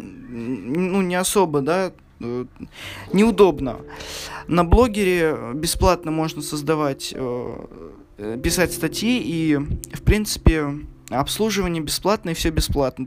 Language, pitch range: Russian, 145-185 Hz